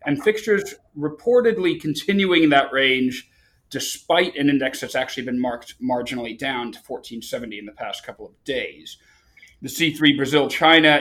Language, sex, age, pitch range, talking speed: English, male, 30-49, 120-150 Hz, 140 wpm